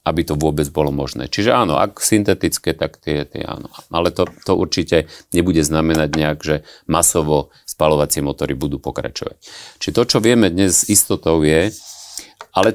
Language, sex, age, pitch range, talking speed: Slovak, male, 40-59, 75-95 Hz, 160 wpm